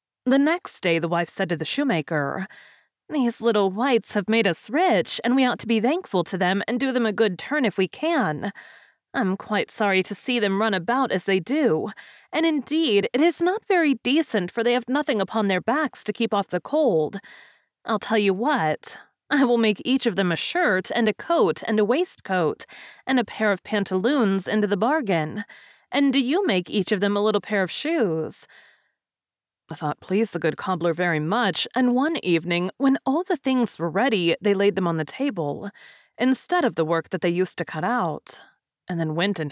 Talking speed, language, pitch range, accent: 210 wpm, English, 180-250 Hz, American